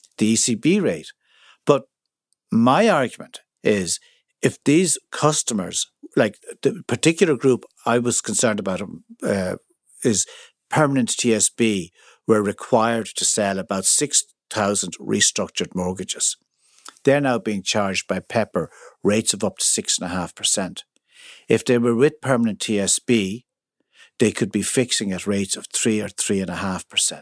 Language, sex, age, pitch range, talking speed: English, male, 60-79, 95-130 Hz, 125 wpm